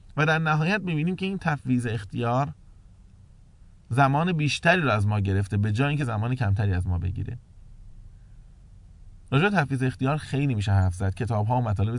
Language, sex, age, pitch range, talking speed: English, male, 20-39, 100-140 Hz, 160 wpm